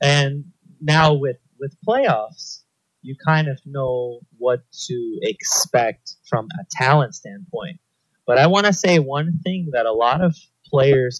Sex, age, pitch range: male, 30-49, 125-170 Hz